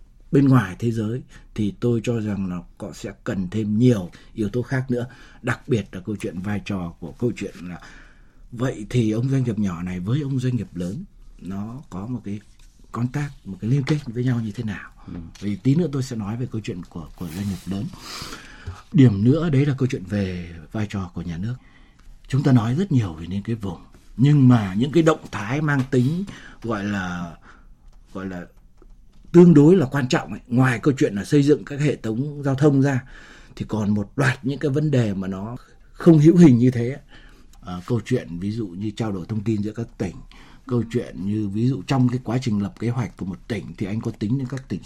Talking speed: 225 wpm